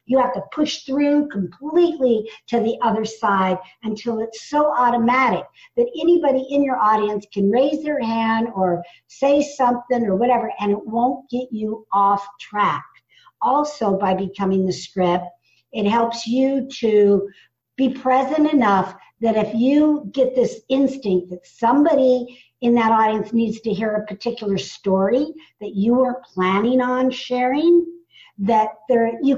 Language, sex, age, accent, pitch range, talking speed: English, female, 50-69, American, 205-275 Hz, 150 wpm